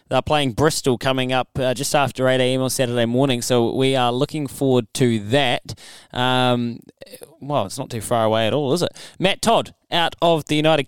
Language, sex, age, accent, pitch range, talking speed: English, male, 20-39, Australian, 115-145 Hz, 205 wpm